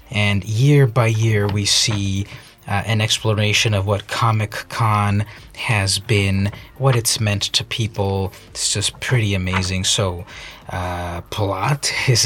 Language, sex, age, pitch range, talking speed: English, male, 30-49, 100-135 Hz, 130 wpm